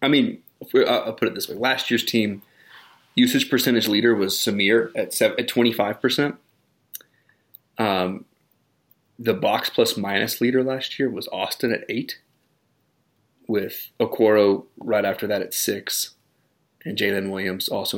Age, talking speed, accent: 30-49, 145 wpm, American